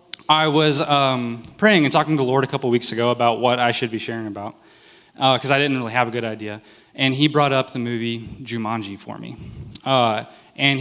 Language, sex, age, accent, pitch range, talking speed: English, male, 20-39, American, 115-140 Hz, 220 wpm